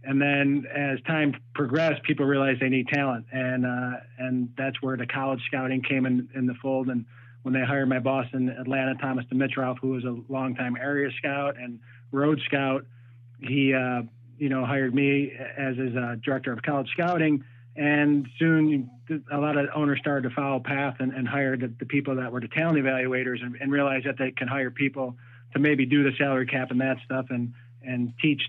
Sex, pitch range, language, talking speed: male, 125-145 Hz, English, 200 wpm